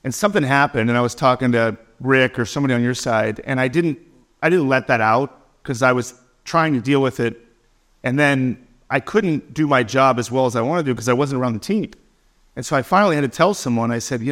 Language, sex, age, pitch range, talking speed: English, male, 40-59, 125-170 Hz, 250 wpm